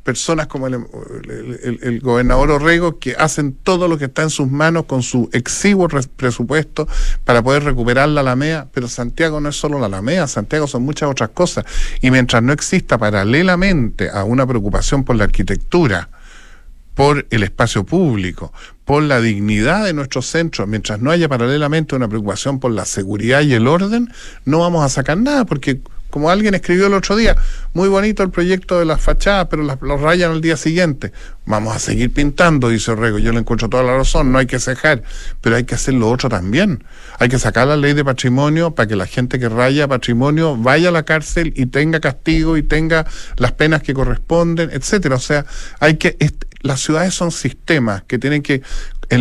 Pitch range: 125-165 Hz